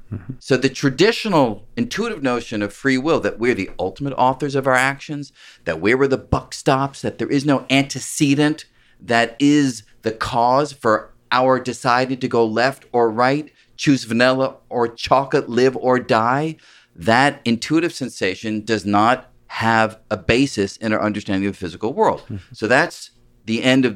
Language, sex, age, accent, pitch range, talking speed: English, male, 40-59, American, 100-135 Hz, 165 wpm